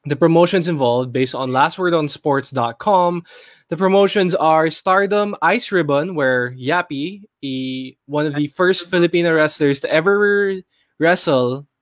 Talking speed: 120 wpm